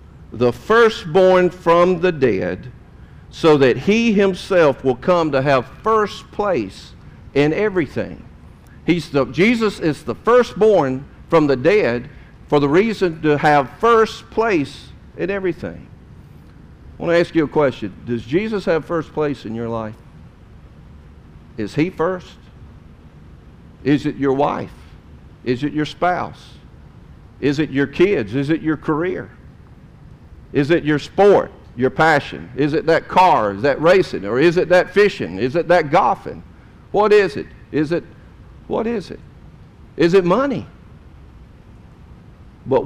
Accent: American